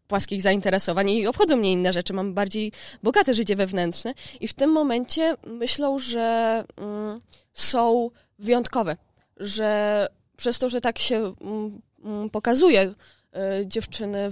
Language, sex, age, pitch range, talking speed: Polish, female, 20-39, 190-225 Hz, 115 wpm